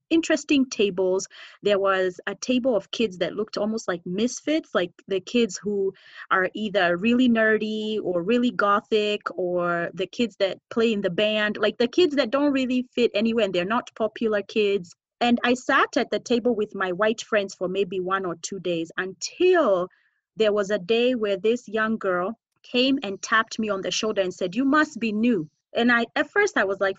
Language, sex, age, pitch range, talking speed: English, female, 30-49, 200-260 Hz, 200 wpm